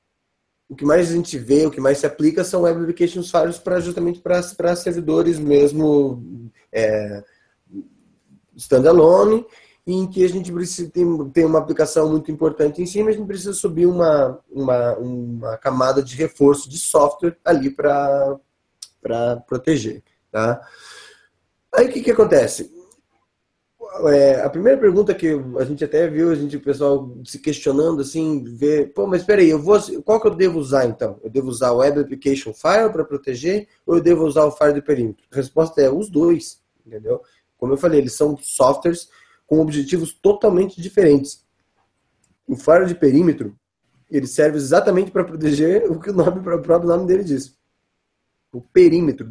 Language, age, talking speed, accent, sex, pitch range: Portuguese, 20-39, 170 wpm, Brazilian, male, 140-180 Hz